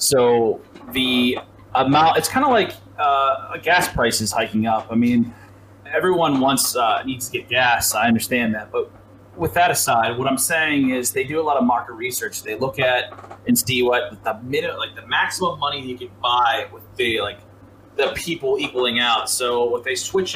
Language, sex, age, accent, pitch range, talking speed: English, male, 20-39, American, 115-140 Hz, 195 wpm